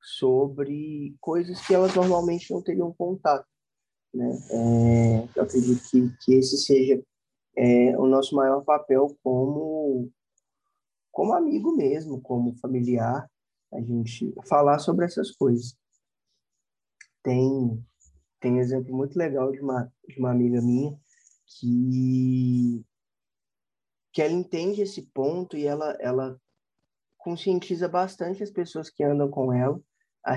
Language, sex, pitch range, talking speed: Portuguese, male, 130-170 Hz, 115 wpm